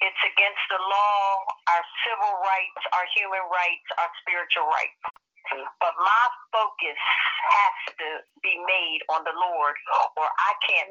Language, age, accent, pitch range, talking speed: English, 50-69, American, 190-260 Hz, 145 wpm